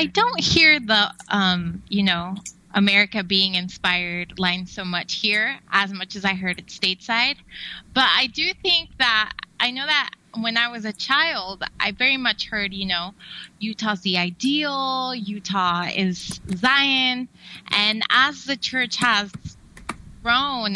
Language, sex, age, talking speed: English, female, 20-39, 150 wpm